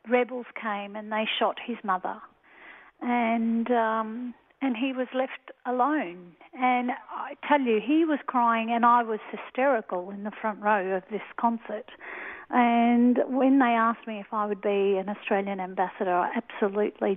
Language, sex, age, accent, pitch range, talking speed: English, female, 40-59, Australian, 210-250 Hz, 160 wpm